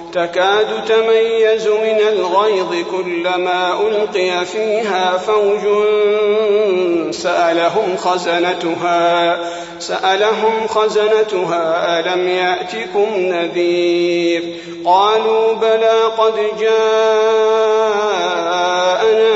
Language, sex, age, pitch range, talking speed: Arabic, male, 50-69, 175-220 Hz, 60 wpm